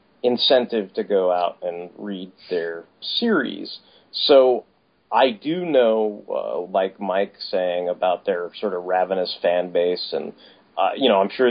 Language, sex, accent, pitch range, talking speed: English, male, American, 95-140 Hz, 150 wpm